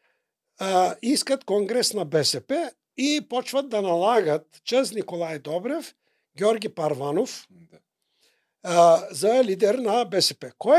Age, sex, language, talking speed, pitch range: 60-79, male, Bulgarian, 100 wpm, 170-260 Hz